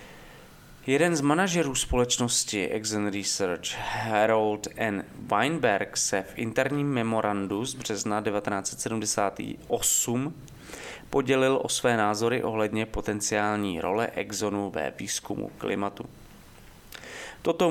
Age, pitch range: 20-39, 105-125 Hz